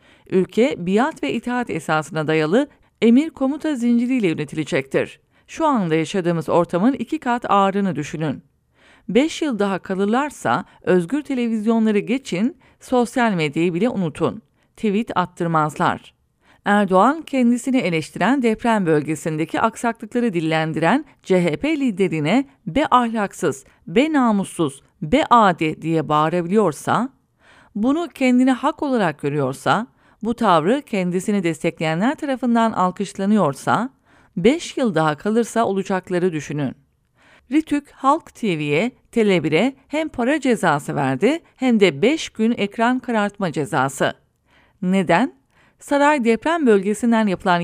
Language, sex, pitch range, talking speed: English, female, 175-250 Hz, 105 wpm